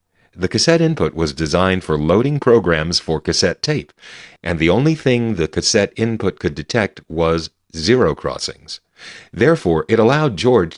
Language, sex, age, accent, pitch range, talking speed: English, male, 40-59, American, 80-115 Hz, 150 wpm